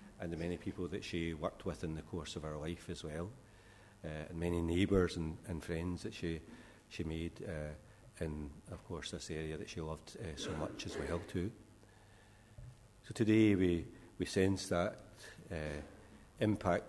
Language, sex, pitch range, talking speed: English, male, 85-105 Hz, 180 wpm